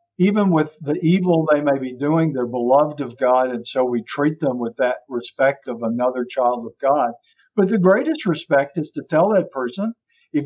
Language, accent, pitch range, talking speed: English, American, 130-155 Hz, 200 wpm